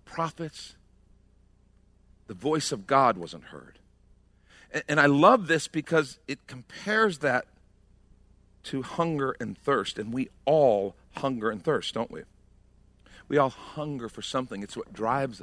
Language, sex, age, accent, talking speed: English, male, 50-69, American, 140 wpm